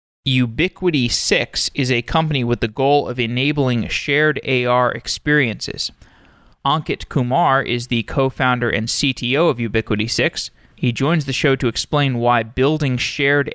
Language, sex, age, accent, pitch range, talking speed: English, male, 20-39, American, 120-150 Hz, 140 wpm